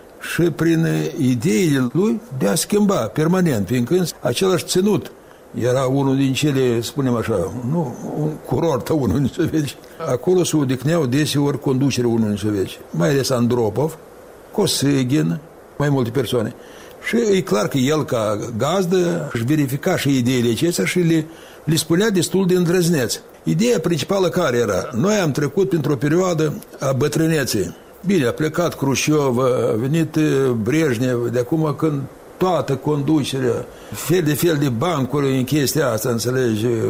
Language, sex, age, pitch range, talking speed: Romanian, male, 60-79, 130-180 Hz, 145 wpm